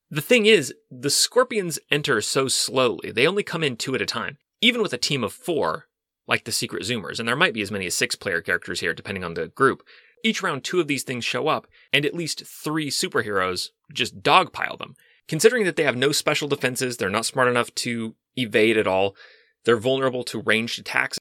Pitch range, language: 115-160 Hz, English